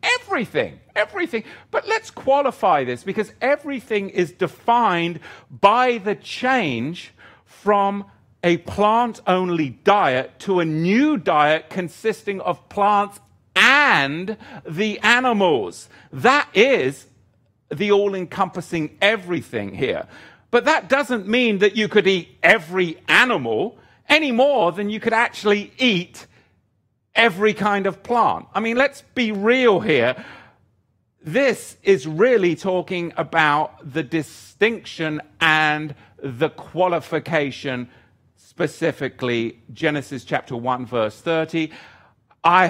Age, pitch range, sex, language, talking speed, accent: 50-69, 130-210 Hz, male, English, 110 wpm, British